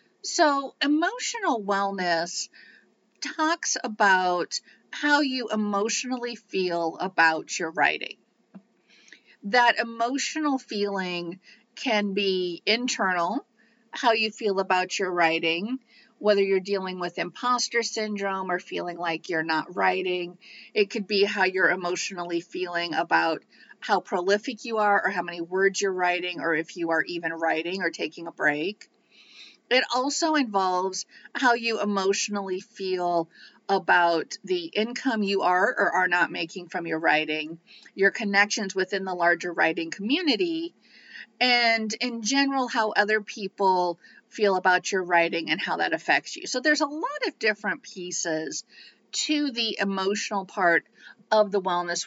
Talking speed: 135 wpm